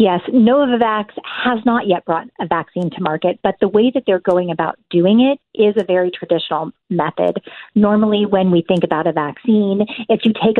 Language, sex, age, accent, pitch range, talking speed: English, female, 40-59, American, 175-215 Hz, 190 wpm